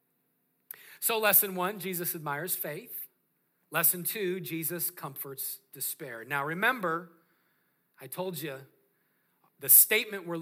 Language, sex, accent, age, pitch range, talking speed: English, male, American, 40-59, 145-185 Hz, 110 wpm